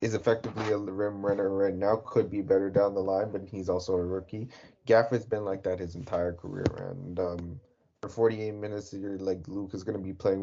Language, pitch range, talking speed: English, 90-110 Hz, 225 wpm